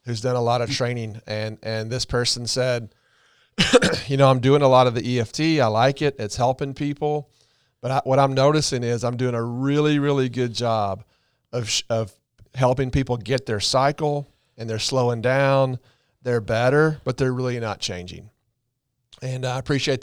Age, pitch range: 40-59, 115-140 Hz